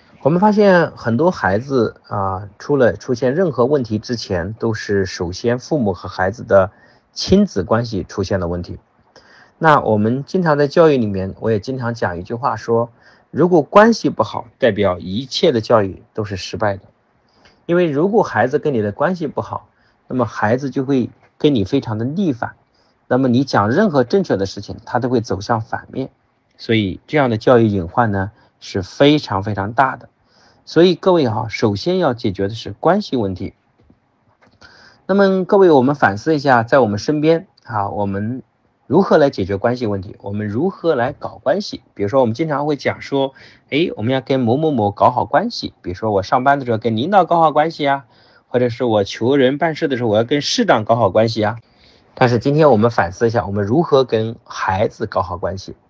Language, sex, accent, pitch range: Chinese, male, native, 105-145 Hz